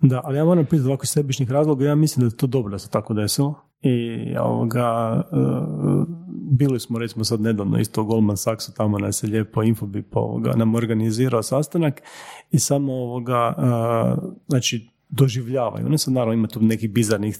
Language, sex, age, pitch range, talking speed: Croatian, male, 40-59, 110-135 Hz, 180 wpm